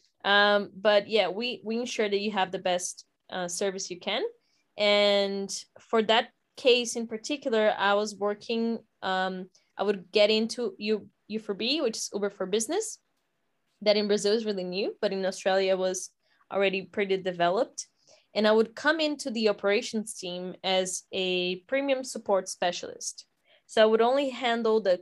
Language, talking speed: English, 160 wpm